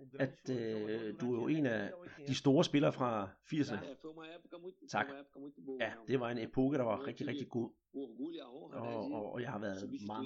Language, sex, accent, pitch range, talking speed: Danish, male, native, 115-145 Hz, 170 wpm